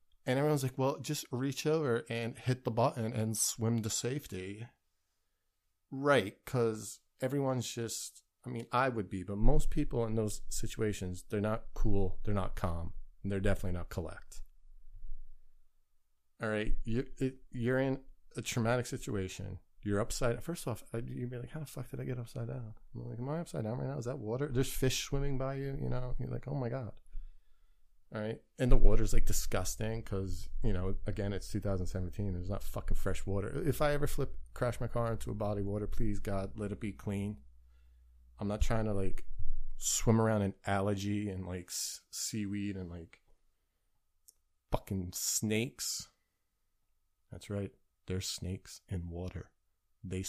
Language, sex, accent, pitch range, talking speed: English, male, American, 95-125 Hz, 180 wpm